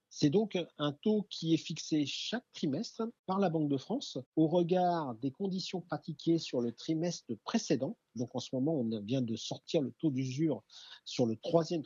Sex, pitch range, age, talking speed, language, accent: male, 130-190 Hz, 50-69, 185 wpm, French, French